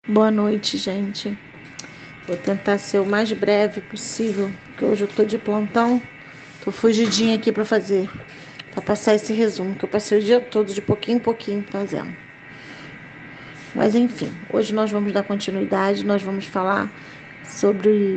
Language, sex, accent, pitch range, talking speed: Portuguese, female, Brazilian, 200-235 Hz, 155 wpm